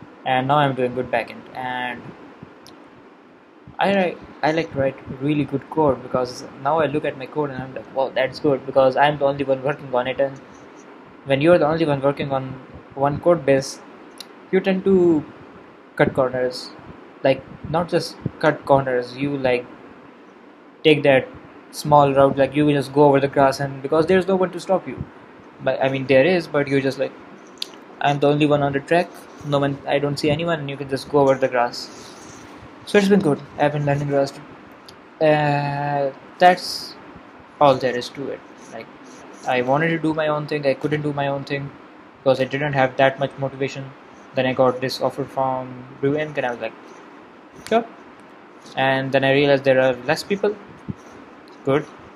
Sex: male